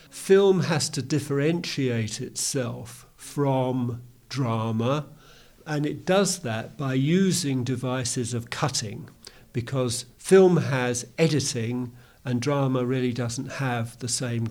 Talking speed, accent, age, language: 110 wpm, British, 50-69, English